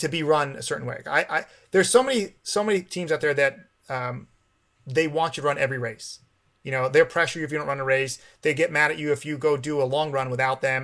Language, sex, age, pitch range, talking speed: English, male, 30-49, 130-155 Hz, 270 wpm